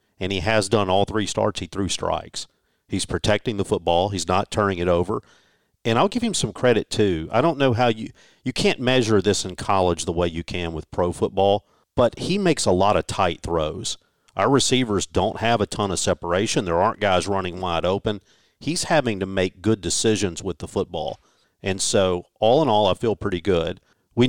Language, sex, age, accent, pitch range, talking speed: English, male, 50-69, American, 90-110 Hz, 210 wpm